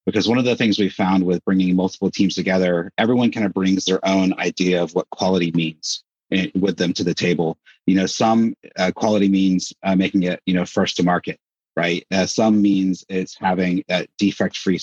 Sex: male